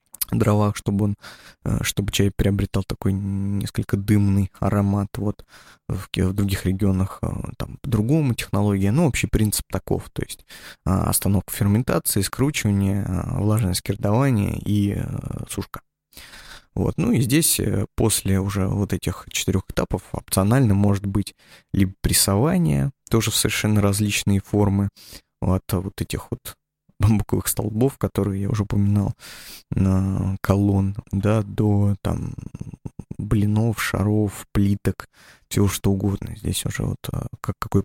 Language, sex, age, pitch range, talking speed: Russian, male, 20-39, 100-120 Hz, 120 wpm